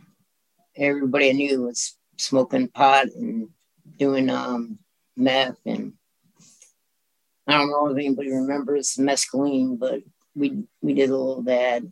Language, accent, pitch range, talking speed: English, American, 130-160 Hz, 130 wpm